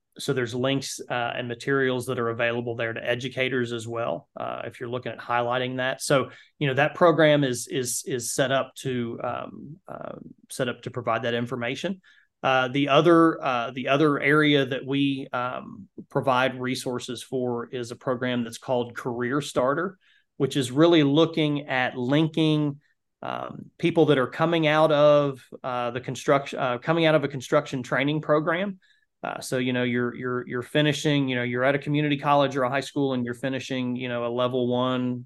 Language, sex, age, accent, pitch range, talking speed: English, male, 30-49, American, 125-150 Hz, 185 wpm